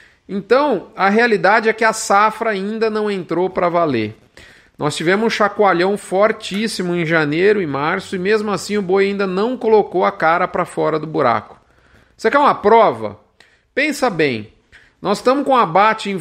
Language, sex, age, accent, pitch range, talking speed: Portuguese, male, 40-59, Brazilian, 165-205 Hz, 170 wpm